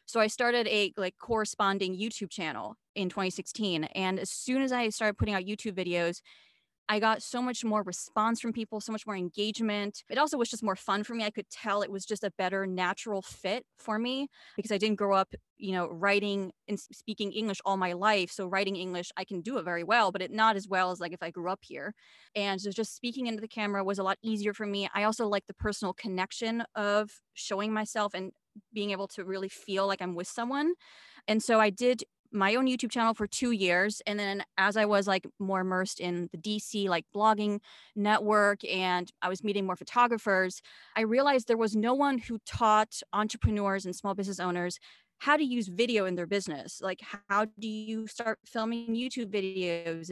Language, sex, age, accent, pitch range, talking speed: English, female, 20-39, American, 190-220 Hz, 215 wpm